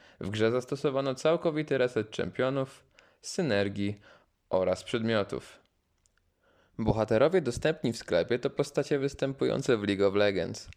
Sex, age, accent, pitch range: male, 20-39, native, 95-130 Hz